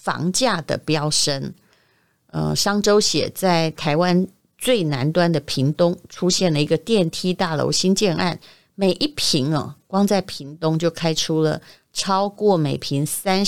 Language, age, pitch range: Chinese, 30-49, 155-205 Hz